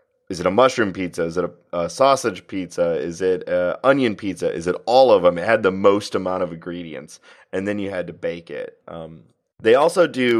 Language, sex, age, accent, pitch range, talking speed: English, male, 30-49, American, 90-150 Hz, 225 wpm